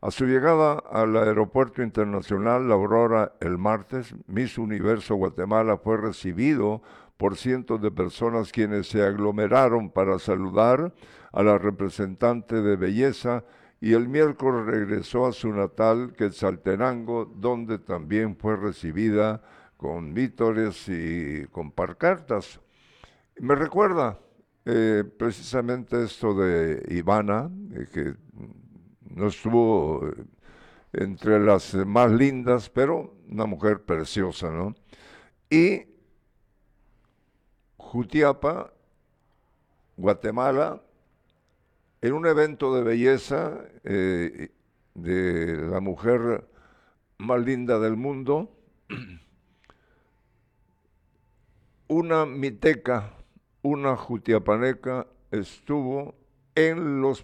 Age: 60-79